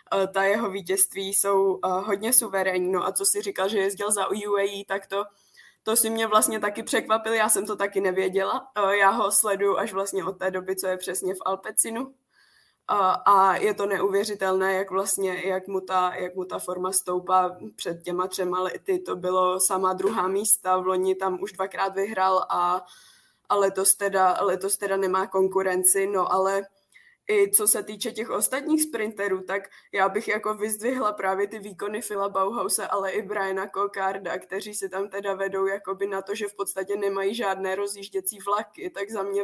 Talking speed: 185 wpm